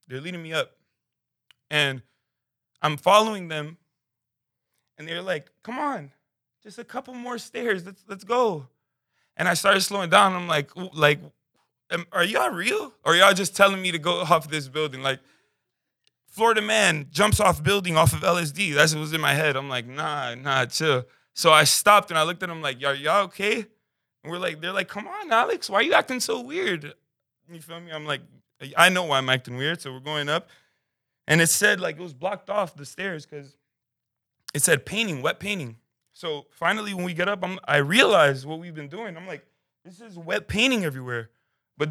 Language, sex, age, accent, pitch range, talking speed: English, male, 20-39, American, 140-195 Hz, 205 wpm